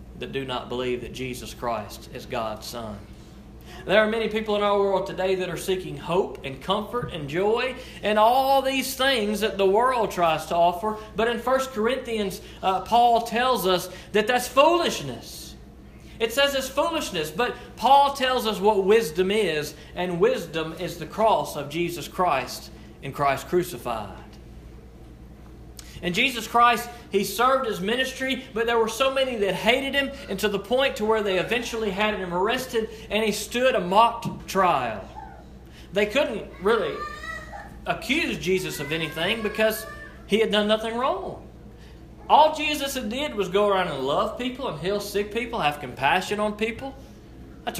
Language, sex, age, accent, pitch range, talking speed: English, male, 40-59, American, 175-240 Hz, 165 wpm